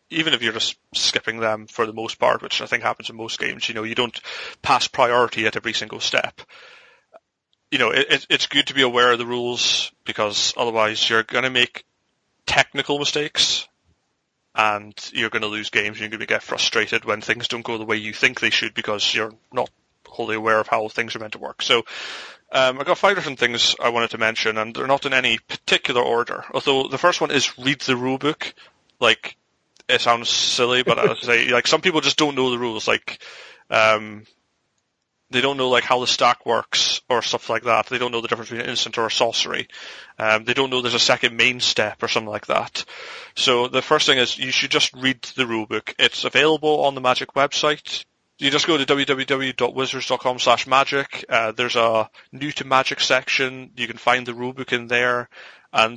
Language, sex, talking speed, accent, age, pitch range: English, male, 210 wpm, British, 30-49, 115-140 Hz